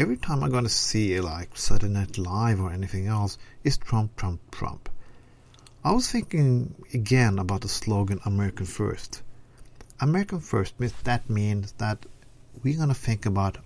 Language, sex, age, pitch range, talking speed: English, male, 50-69, 105-130 Hz, 160 wpm